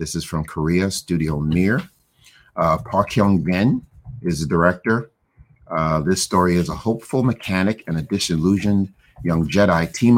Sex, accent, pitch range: male, American, 80-95 Hz